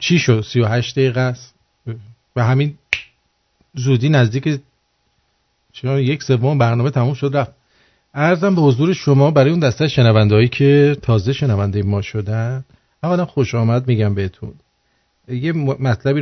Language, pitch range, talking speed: English, 115-135 Hz, 135 wpm